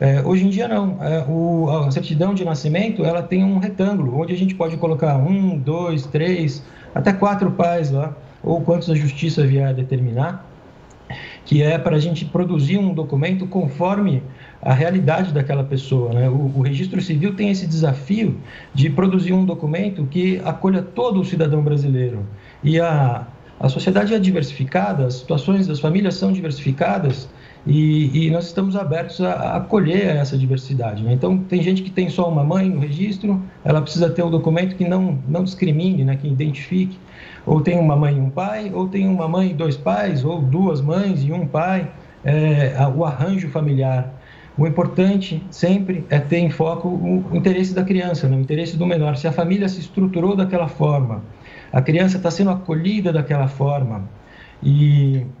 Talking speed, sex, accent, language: 180 wpm, male, Brazilian, Portuguese